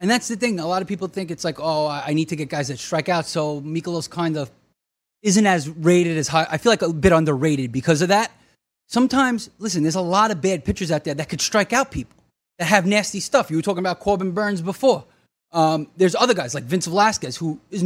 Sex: male